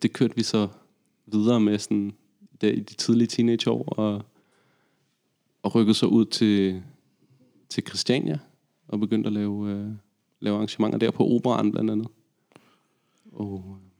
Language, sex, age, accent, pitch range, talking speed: Danish, male, 30-49, native, 100-110 Hz, 145 wpm